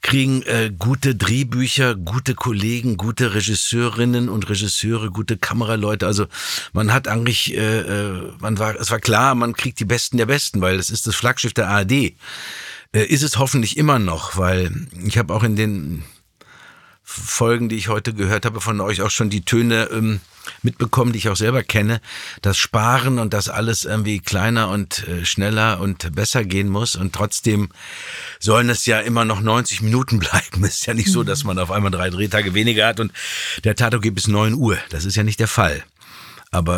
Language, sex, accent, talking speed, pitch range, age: German, male, German, 190 wpm, 95-115 Hz, 50-69